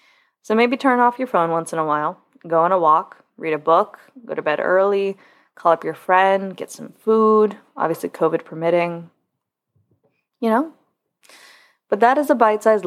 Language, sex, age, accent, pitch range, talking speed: English, female, 20-39, American, 175-235 Hz, 175 wpm